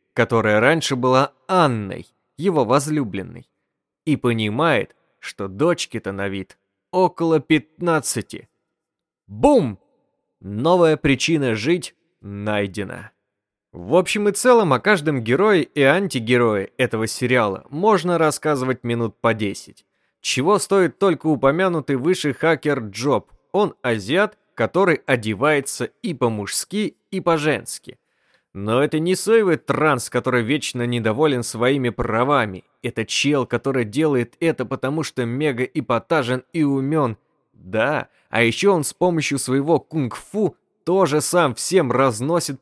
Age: 20-39